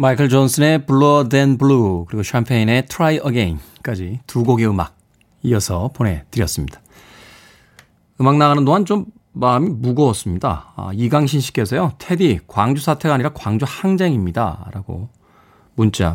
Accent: native